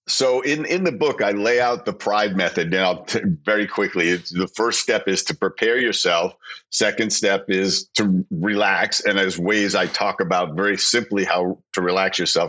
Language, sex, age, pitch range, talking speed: English, male, 50-69, 95-125 Hz, 185 wpm